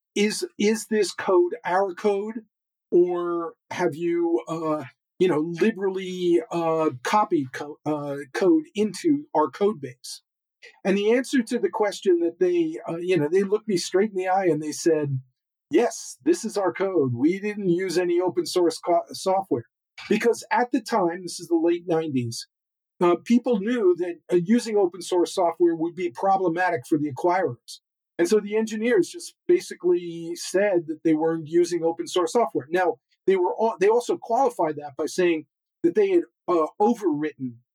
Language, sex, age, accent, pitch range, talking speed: English, male, 50-69, American, 160-215 Hz, 170 wpm